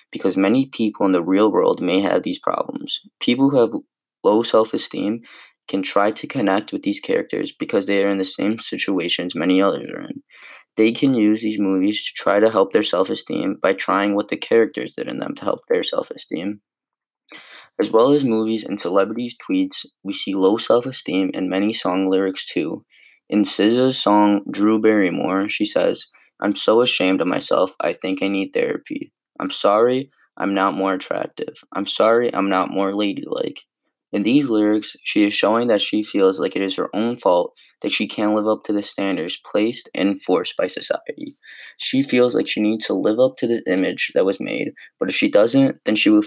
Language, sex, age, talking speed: English, male, 20-39, 195 wpm